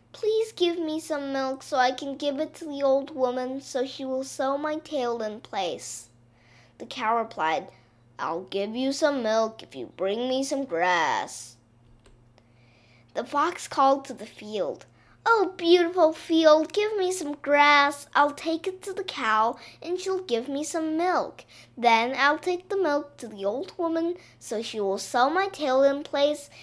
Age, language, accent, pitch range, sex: 20-39, Chinese, American, 195-305 Hz, female